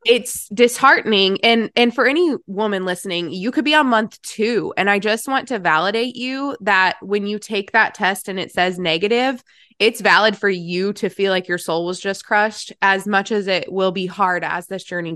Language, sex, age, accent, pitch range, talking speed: English, female, 20-39, American, 180-220 Hz, 210 wpm